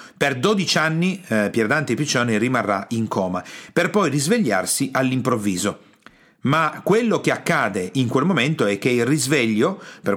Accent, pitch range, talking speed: native, 110-140 Hz, 150 wpm